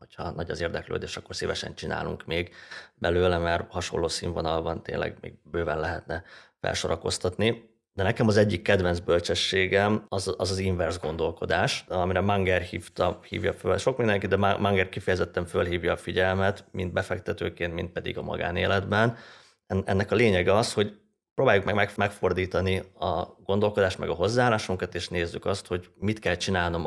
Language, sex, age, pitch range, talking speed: Hungarian, male, 30-49, 85-100 Hz, 150 wpm